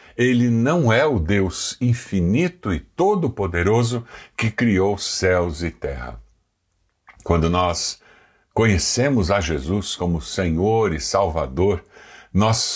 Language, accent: Portuguese, Brazilian